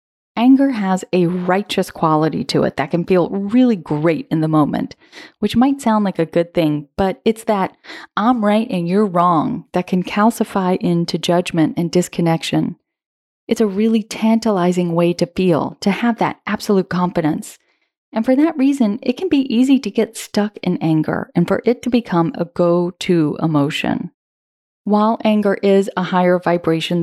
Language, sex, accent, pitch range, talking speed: English, female, American, 175-225 Hz, 170 wpm